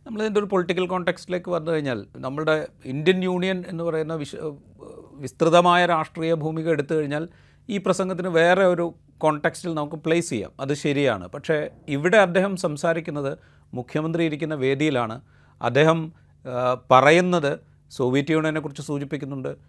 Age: 40-59